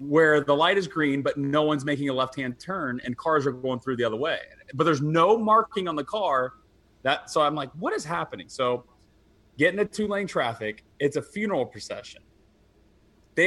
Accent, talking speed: American, 200 wpm